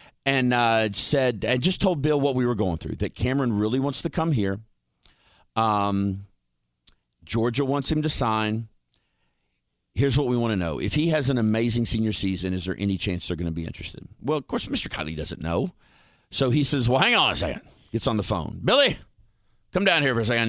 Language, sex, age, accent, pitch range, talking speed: English, male, 40-59, American, 105-135 Hz, 215 wpm